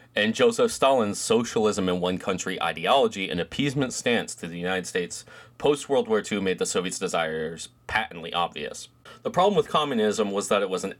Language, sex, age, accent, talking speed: English, male, 30-49, American, 180 wpm